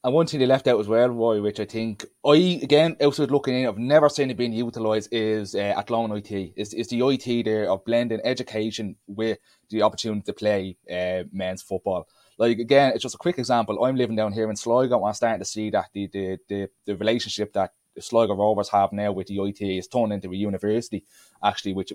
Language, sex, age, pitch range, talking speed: English, male, 20-39, 100-120 Hz, 225 wpm